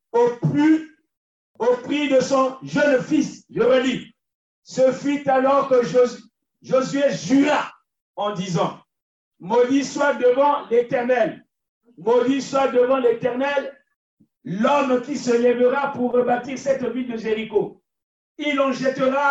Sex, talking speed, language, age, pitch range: male, 125 wpm, French, 50-69, 245-285 Hz